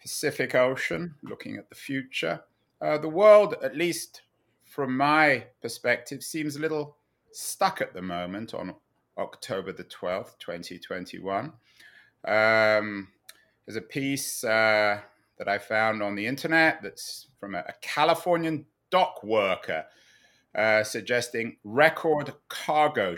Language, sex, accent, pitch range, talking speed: English, male, British, 105-150 Hz, 120 wpm